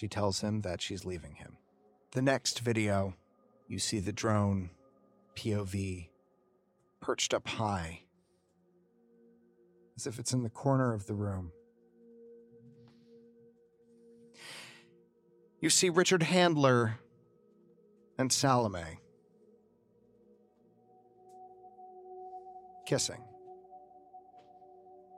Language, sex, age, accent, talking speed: English, male, 40-59, American, 80 wpm